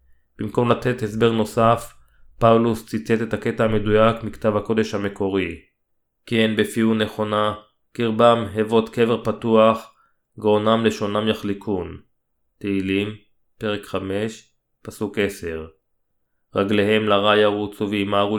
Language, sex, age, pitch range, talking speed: Hebrew, male, 20-39, 100-110 Hz, 105 wpm